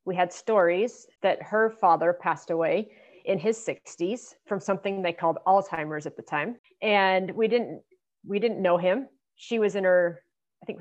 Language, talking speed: English, 180 wpm